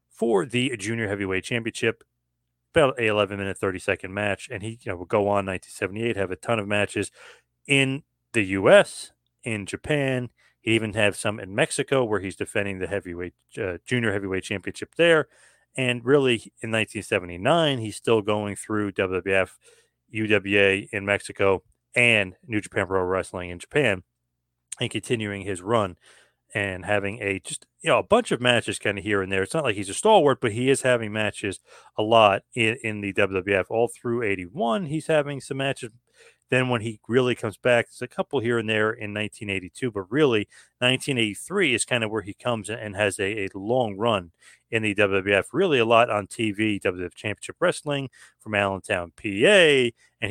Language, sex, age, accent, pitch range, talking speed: English, male, 30-49, American, 100-120 Hz, 180 wpm